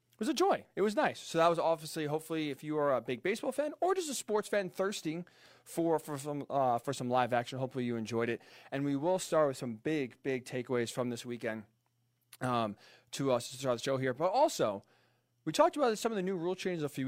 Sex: male